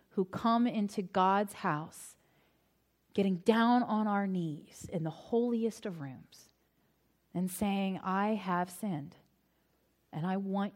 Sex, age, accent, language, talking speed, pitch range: female, 30-49, American, English, 130 wpm, 175-230 Hz